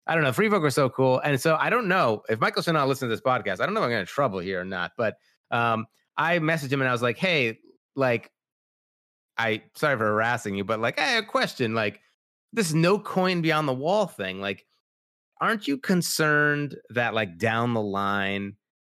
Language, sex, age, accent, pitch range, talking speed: English, male, 30-49, American, 105-150 Hz, 230 wpm